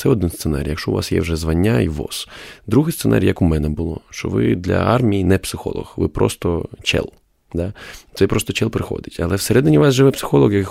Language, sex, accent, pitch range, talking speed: Ukrainian, male, native, 90-130 Hz, 205 wpm